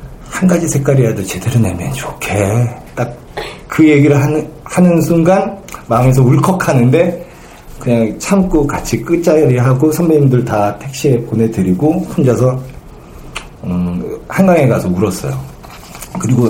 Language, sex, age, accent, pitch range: Korean, male, 40-59, native, 115-165 Hz